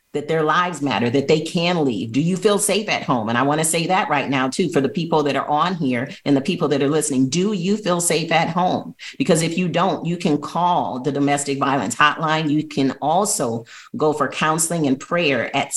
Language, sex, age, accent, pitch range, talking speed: English, female, 40-59, American, 140-180 Hz, 230 wpm